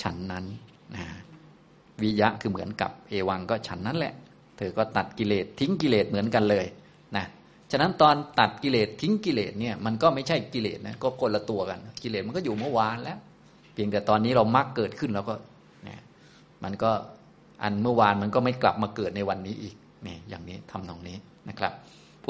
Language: Thai